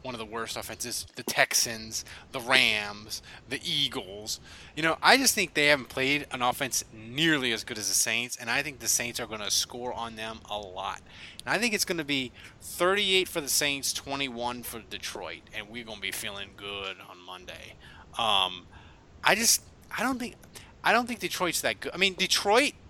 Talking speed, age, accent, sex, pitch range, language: 205 wpm, 30-49, American, male, 100-145 Hz, English